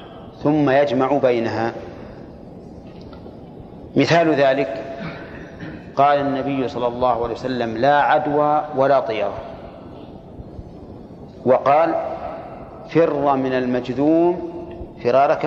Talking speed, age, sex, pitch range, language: 80 wpm, 40-59, male, 125-150 Hz, Arabic